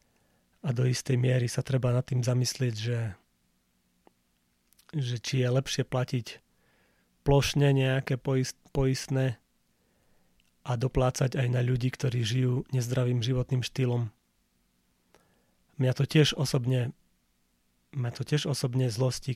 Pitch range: 115-130 Hz